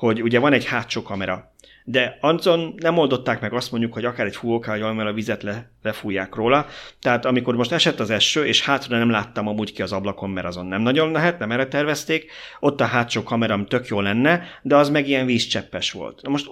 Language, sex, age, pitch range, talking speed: Hungarian, male, 30-49, 105-130 Hz, 215 wpm